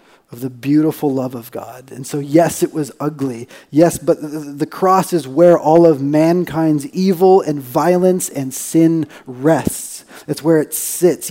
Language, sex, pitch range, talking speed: English, male, 150-190 Hz, 170 wpm